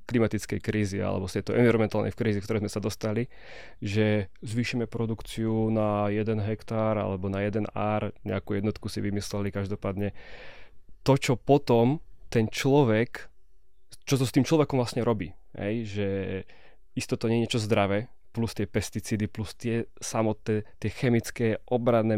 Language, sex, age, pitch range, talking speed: Slovak, male, 20-39, 105-125 Hz, 145 wpm